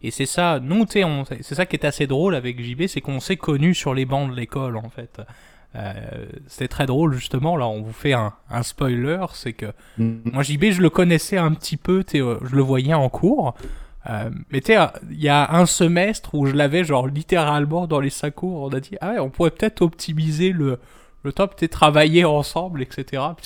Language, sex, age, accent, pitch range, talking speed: French, male, 20-39, French, 135-175 Hz, 220 wpm